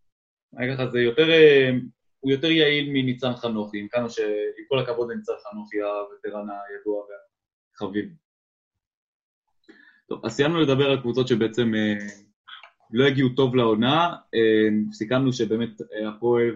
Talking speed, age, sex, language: 110 wpm, 20-39, male, Hebrew